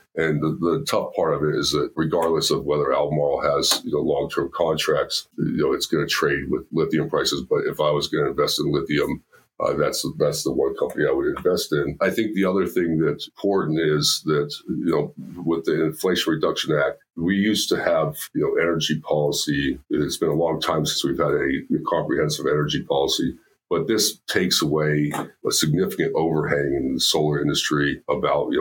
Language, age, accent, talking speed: English, 50-69, American, 200 wpm